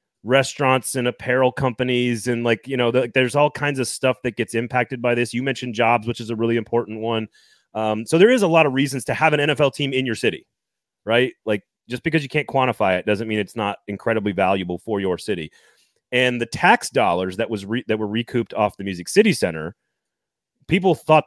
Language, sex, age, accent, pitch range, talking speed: English, male, 30-49, American, 110-140 Hz, 220 wpm